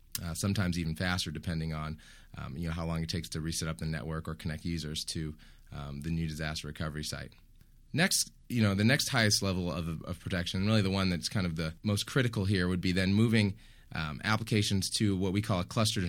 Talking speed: 230 wpm